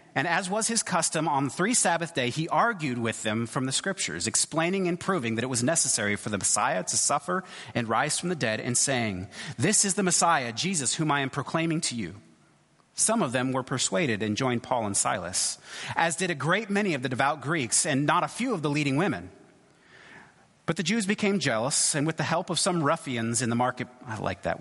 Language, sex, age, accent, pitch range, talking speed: English, male, 30-49, American, 130-190 Hz, 225 wpm